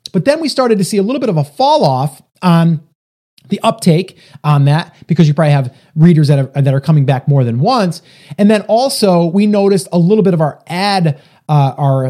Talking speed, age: 225 wpm, 30-49